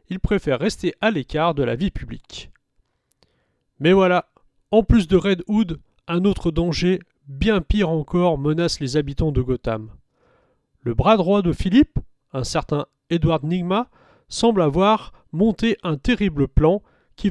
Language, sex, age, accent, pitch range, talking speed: French, male, 40-59, French, 140-200 Hz, 150 wpm